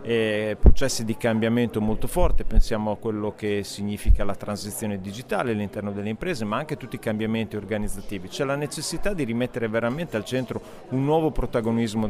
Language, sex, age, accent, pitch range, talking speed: Italian, male, 40-59, native, 105-130 Hz, 170 wpm